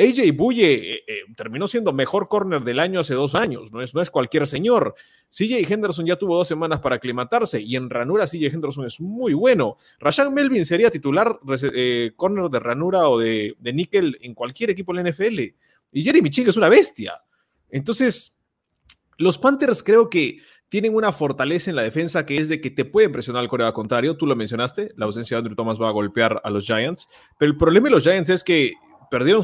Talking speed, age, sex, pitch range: 210 wpm, 30-49, male, 125-195 Hz